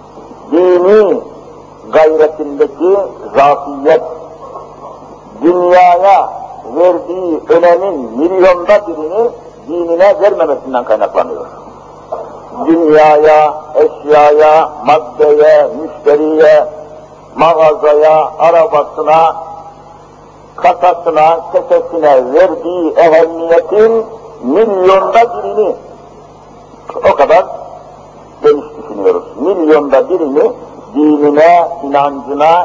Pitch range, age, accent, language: 150-200 Hz, 60-79, native, Turkish